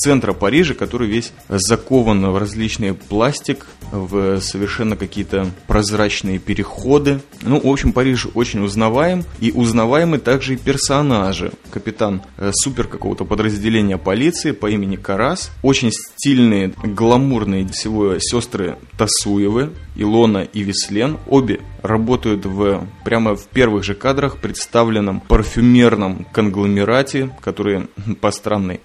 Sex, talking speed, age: male, 110 wpm, 20-39